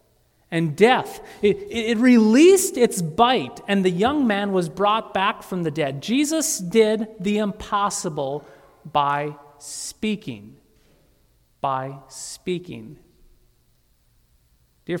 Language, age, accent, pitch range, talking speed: English, 40-59, American, 170-235 Hz, 105 wpm